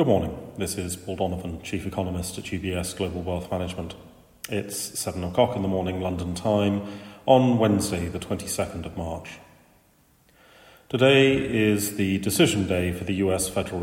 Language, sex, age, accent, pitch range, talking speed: English, male, 40-59, British, 95-115 Hz, 155 wpm